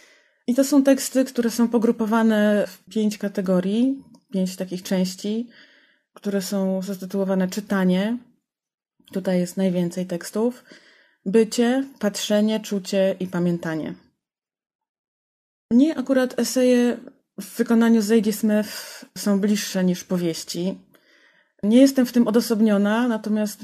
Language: Polish